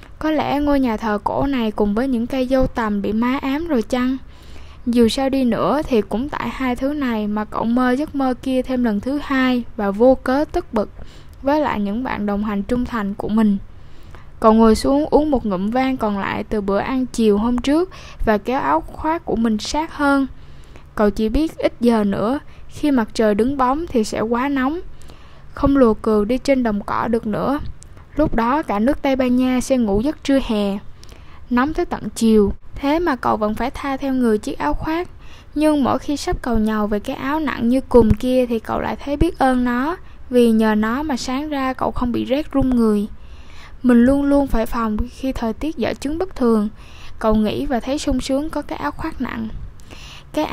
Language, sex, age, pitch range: English, female, 10-29, 220-280 Hz